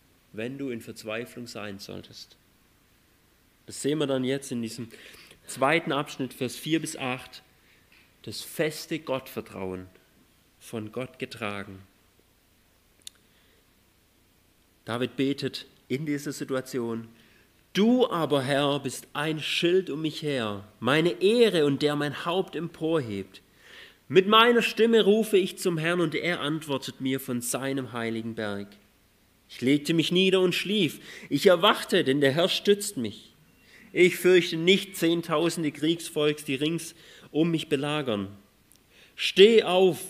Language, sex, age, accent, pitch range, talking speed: German, male, 40-59, German, 115-160 Hz, 130 wpm